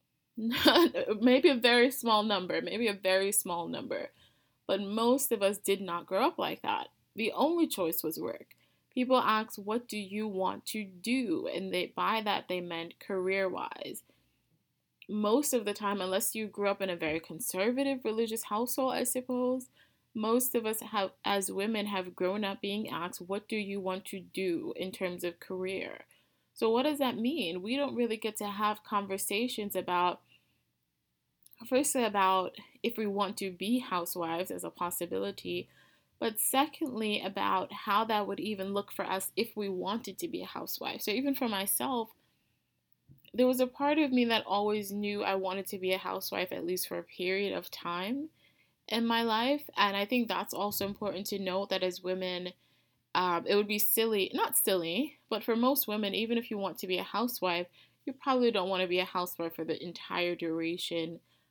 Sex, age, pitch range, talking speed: female, 20-39, 185-235 Hz, 180 wpm